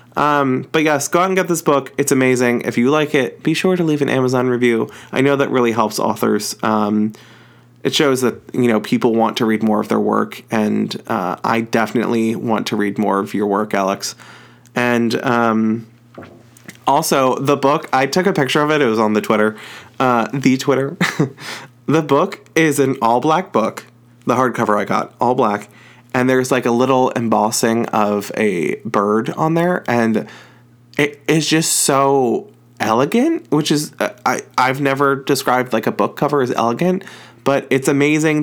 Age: 20-39